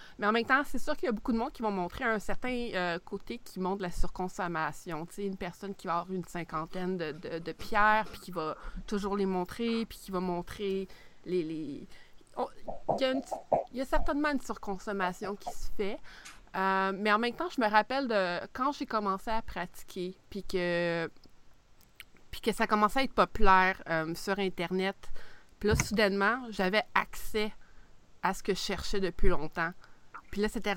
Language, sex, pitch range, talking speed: French, female, 180-215 Hz, 195 wpm